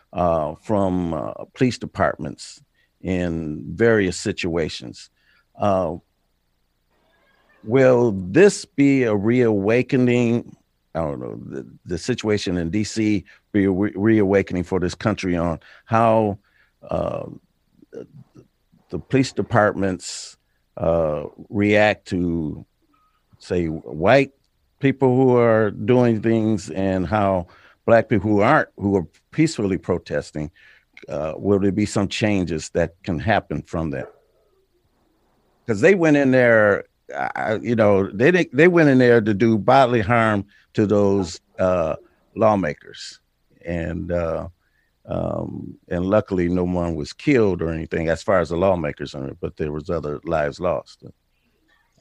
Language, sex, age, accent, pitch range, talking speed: English, male, 50-69, American, 85-115 Hz, 125 wpm